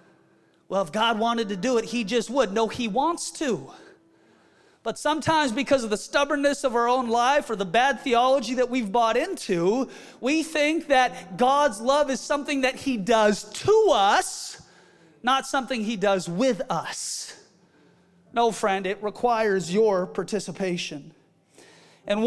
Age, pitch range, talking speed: 30-49, 215-285 Hz, 155 wpm